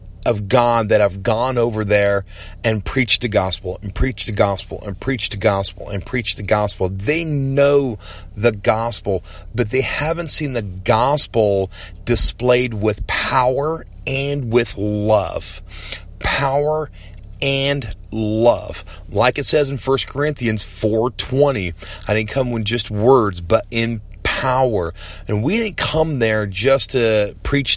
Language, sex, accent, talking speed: English, male, American, 145 wpm